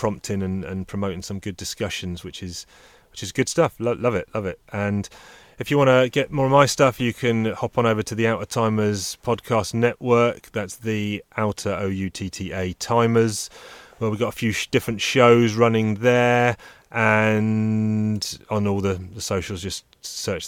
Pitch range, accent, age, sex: 95-115 Hz, British, 30-49, male